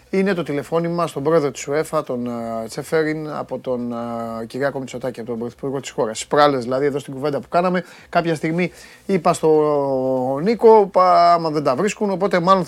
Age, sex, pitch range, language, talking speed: 30-49, male, 135-175 Hz, Greek, 185 wpm